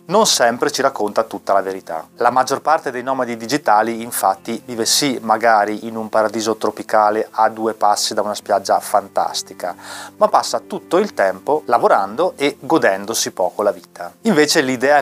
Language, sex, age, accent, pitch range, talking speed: Italian, male, 30-49, native, 105-130 Hz, 165 wpm